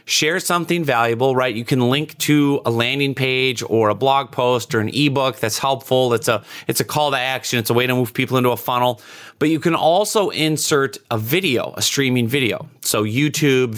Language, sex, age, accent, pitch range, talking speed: English, male, 30-49, American, 120-150 Hz, 205 wpm